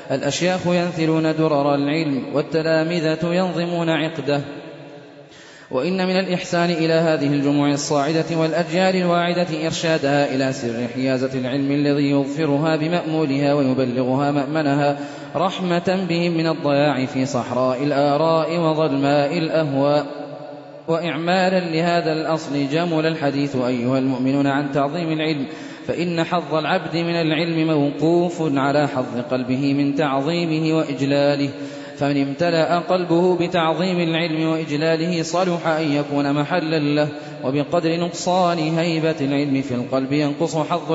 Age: 20-39